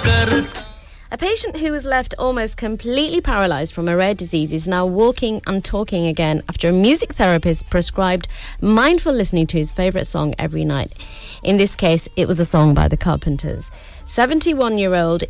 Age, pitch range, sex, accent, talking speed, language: 30-49, 155-195 Hz, female, British, 165 wpm, English